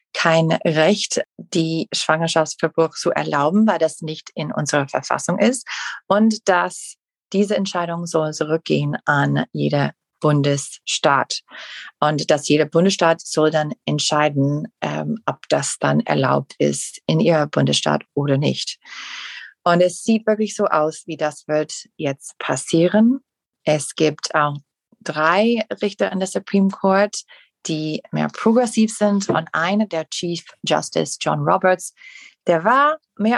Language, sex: German, female